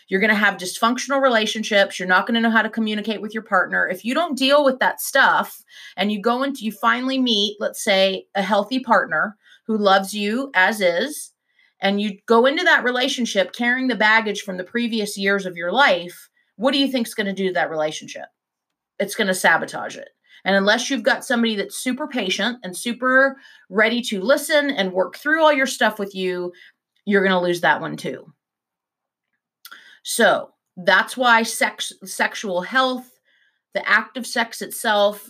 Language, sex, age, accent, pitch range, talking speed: English, female, 30-49, American, 190-250 Hz, 190 wpm